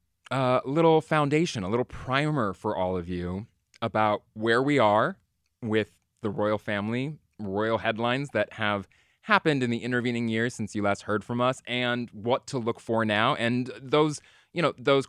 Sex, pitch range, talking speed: male, 100-125 Hz, 175 wpm